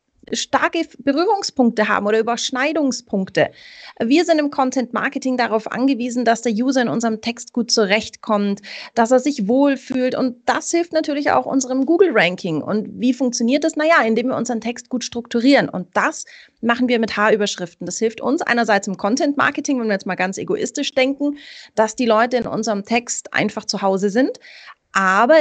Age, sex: 30-49, female